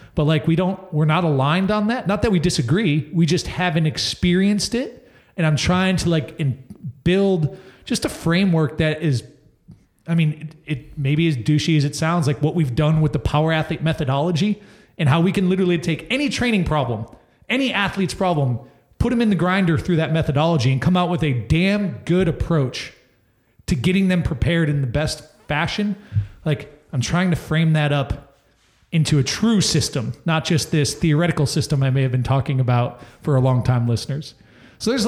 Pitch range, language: 135-170 Hz, English